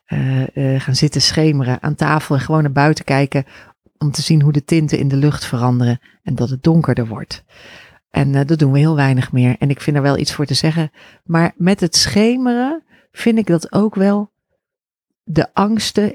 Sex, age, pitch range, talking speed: female, 40-59, 140-195 Hz, 205 wpm